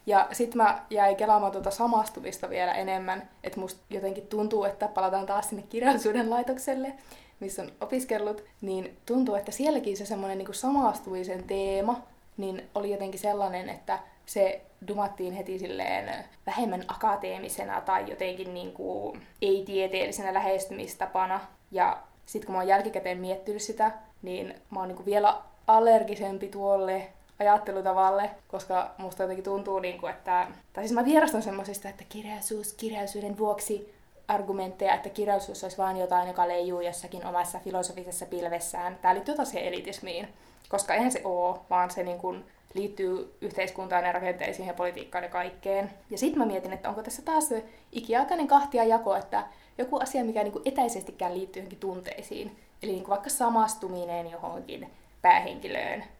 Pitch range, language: 190-220 Hz, Finnish